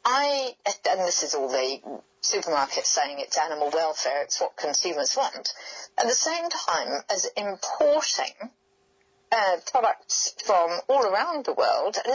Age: 40-59